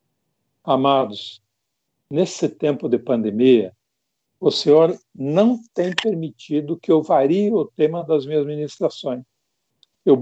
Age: 60-79